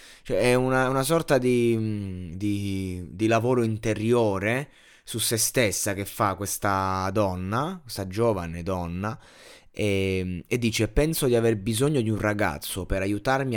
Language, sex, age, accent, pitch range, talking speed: Italian, male, 20-39, native, 100-130 Hz, 135 wpm